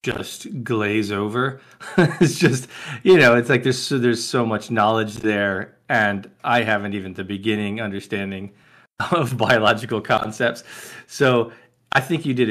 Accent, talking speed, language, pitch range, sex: American, 150 wpm, English, 100-125 Hz, male